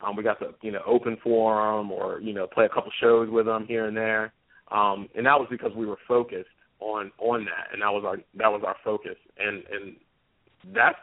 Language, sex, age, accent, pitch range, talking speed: English, male, 30-49, American, 105-130 Hz, 240 wpm